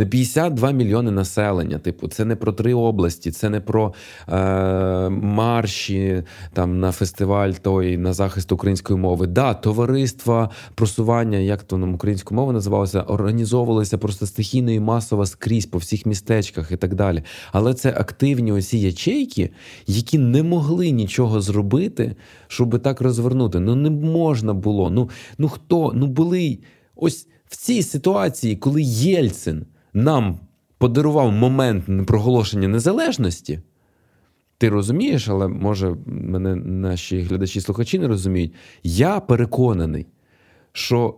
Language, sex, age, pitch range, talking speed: Ukrainian, male, 20-39, 95-125 Hz, 130 wpm